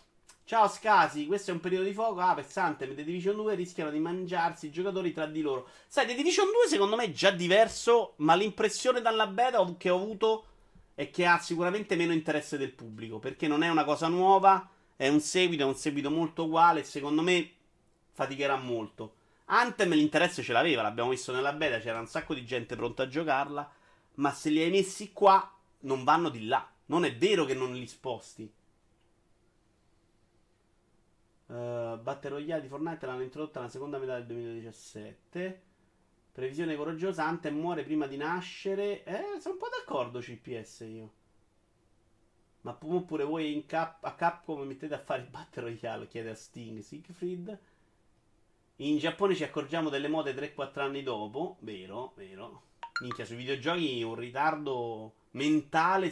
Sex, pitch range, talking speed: male, 120-180 Hz, 170 wpm